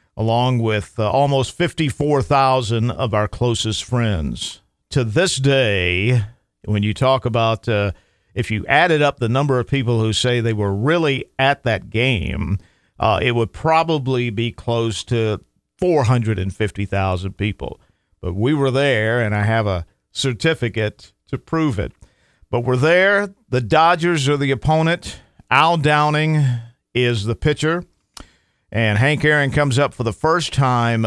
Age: 50-69